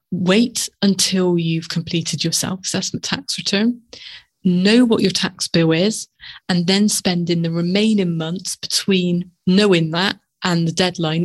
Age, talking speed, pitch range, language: 30-49, 145 wpm, 170-210 Hz, English